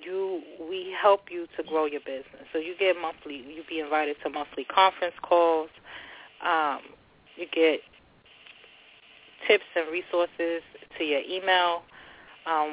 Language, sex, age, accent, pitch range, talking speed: English, female, 20-39, American, 155-175 Hz, 135 wpm